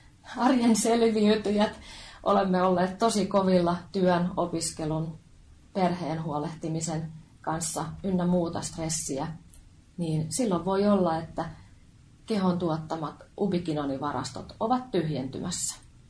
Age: 30-49